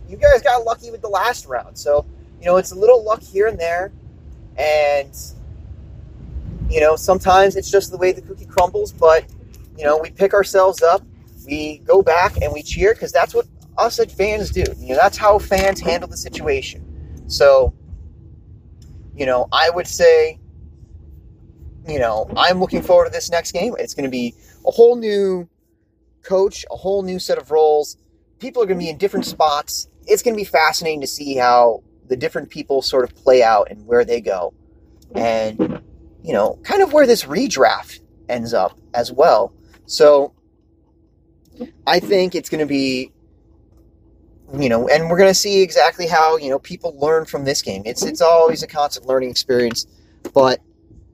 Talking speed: 180 wpm